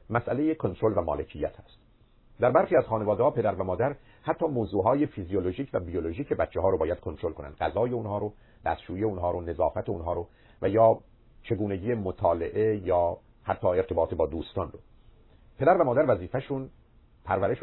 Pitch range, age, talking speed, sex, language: 95-120 Hz, 50-69, 155 wpm, male, Persian